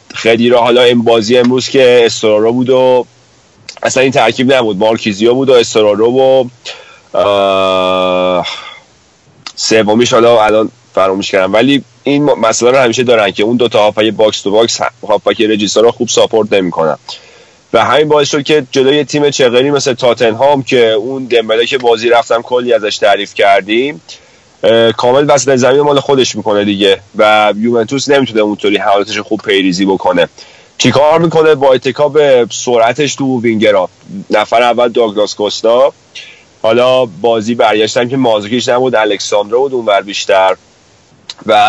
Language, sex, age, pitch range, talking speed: Persian, male, 30-49, 110-130 Hz, 150 wpm